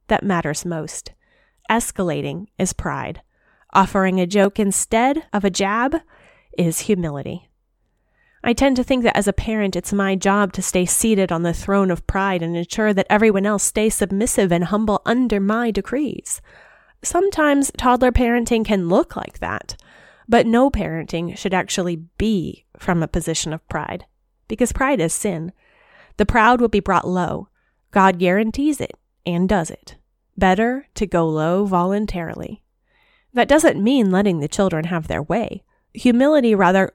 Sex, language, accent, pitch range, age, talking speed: female, English, American, 180-225 Hz, 30-49, 155 wpm